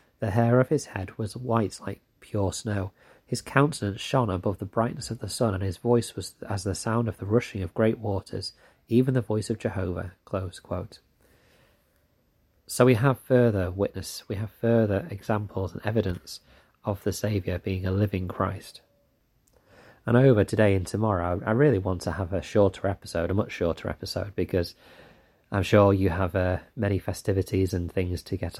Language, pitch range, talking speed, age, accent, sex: English, 95-110 Hz, 180 wpm, 30-49, British, male